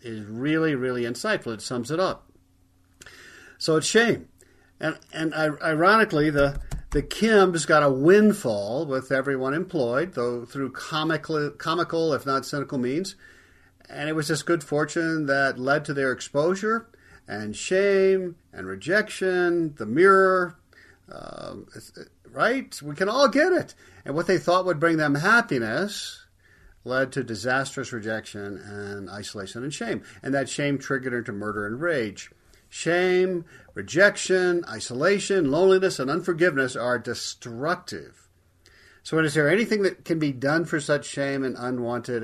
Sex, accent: male, American